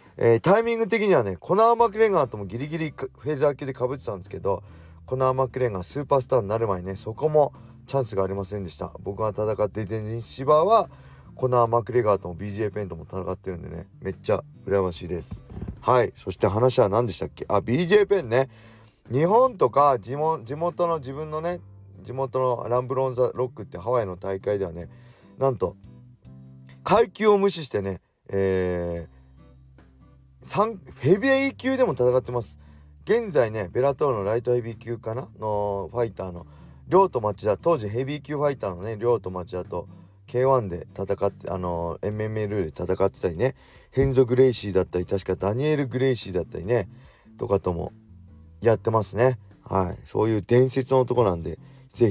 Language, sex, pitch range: Japanese, male, 95-130 Hz